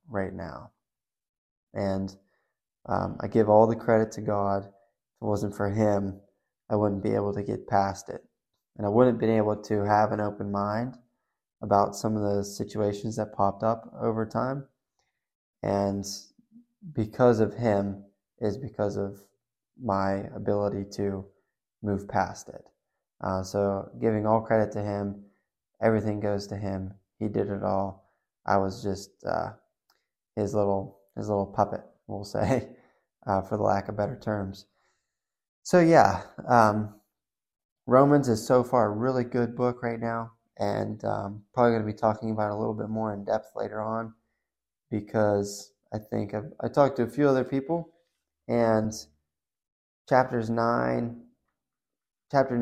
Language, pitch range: English, 100-115 Hz